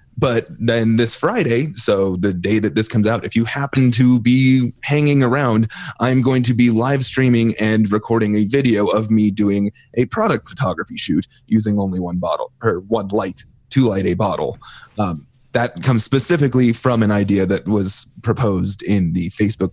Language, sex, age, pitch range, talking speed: English, male, 30-49, 100-120 Hz, 180 wpm